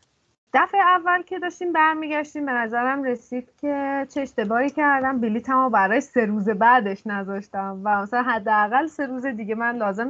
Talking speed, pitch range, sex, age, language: 160 wpm, 210-275 Hz, female, 20-39, Persian